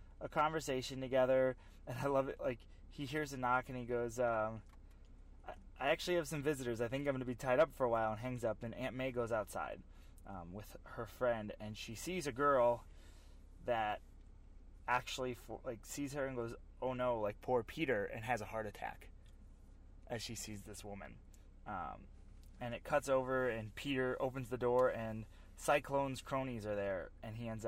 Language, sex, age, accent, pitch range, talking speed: English, male, 20-39, American, 95-130 Hz, 195 wpm